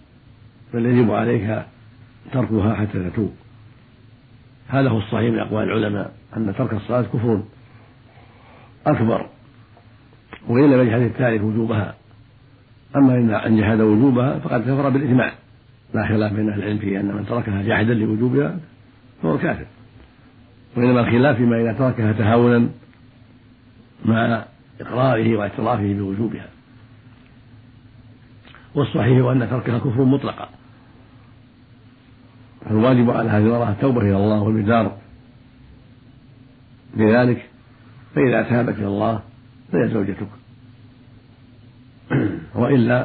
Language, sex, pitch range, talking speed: Arabic, male, 110-125 Hz, 105 wpm